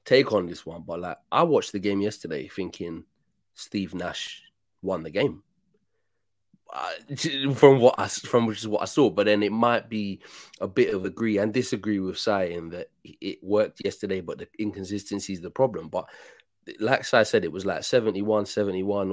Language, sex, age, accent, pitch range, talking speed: English, male, 20-39, British, 95-115 Hz, 190 wpm